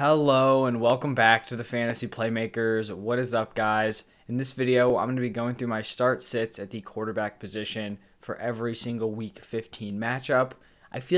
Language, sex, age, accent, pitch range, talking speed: English, male, 20-39, American, 110-125 Hz, 195 wpm